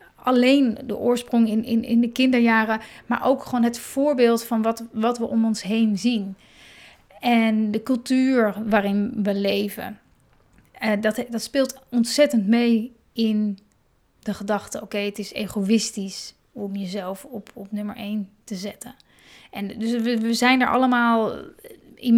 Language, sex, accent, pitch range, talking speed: Dutch, female, Dutch, 215-255 Hz, 150 wpm